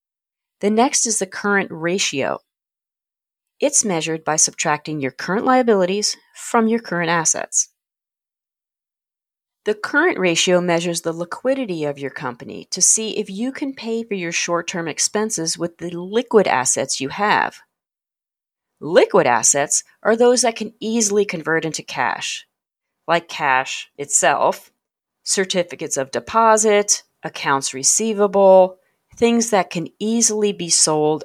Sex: female